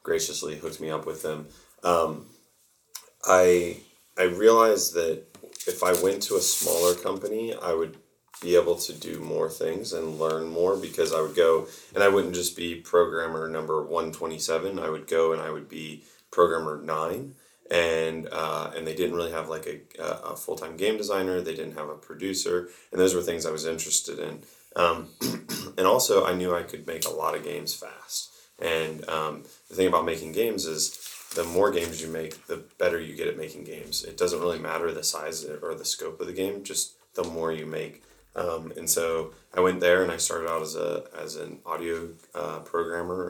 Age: 30-49